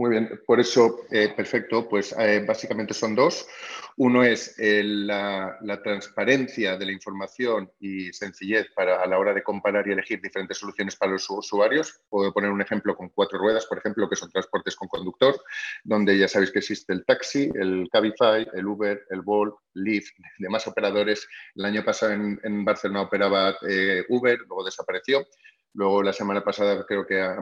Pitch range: 95-110 Hz